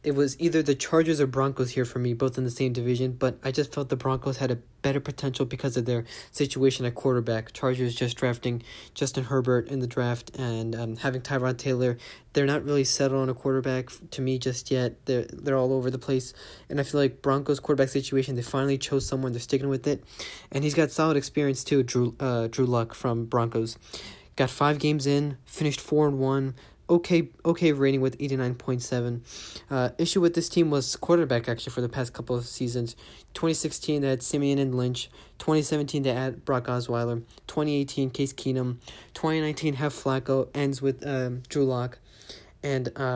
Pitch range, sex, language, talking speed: 125-145 Hz, male, English, 190 wpm